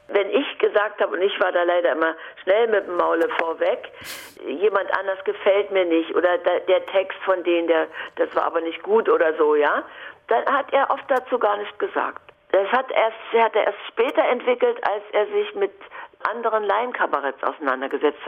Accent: German